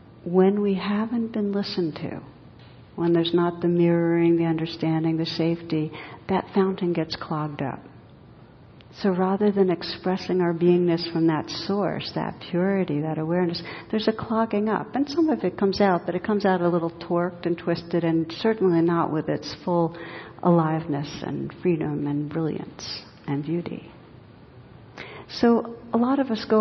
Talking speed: 160 wpm